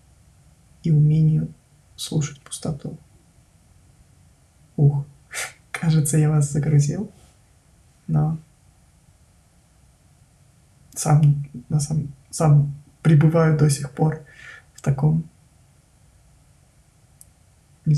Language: Russian